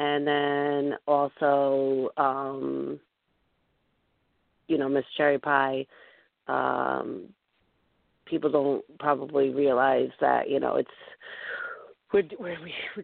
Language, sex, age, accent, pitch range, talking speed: English, female, 40-59, American, 145-200 Hz, 100 wpm